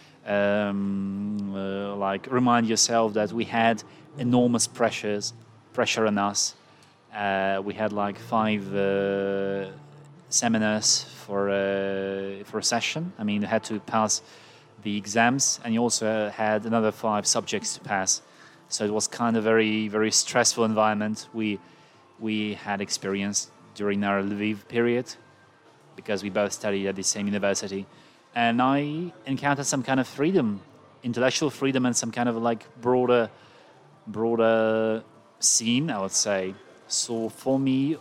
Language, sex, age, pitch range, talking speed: Ukrainian, male, 30-49, 105-125 Hz, 140 wpm